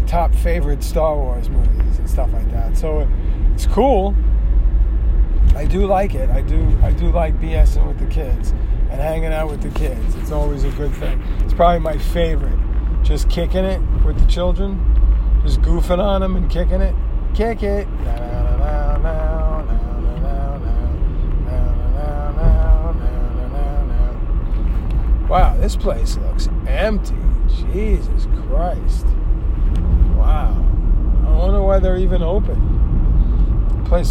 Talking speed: 125 wpm